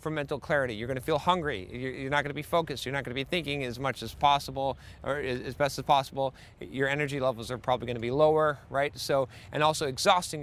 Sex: male